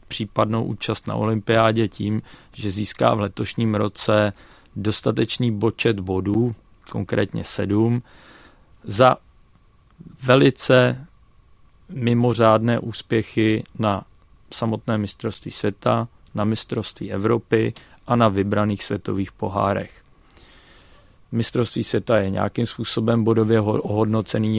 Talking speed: 95 wpm